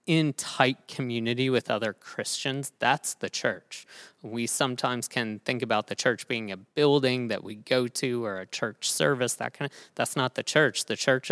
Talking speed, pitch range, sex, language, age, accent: 190 wpm, 115-145 Hz, male, English, 20-39, American